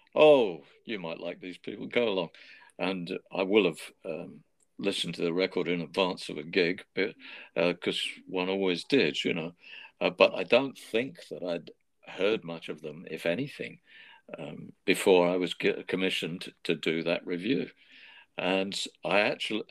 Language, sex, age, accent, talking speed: English, male, 50-69, British, 165 wpm